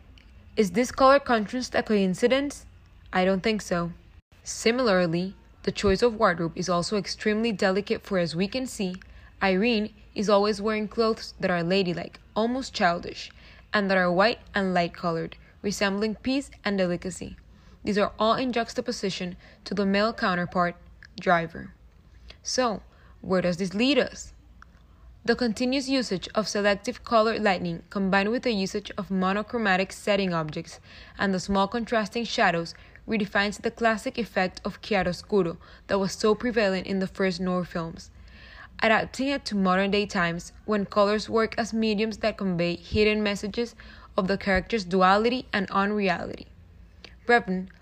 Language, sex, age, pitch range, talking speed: English, female, 20-39, 185-225 Hz, 150 wpm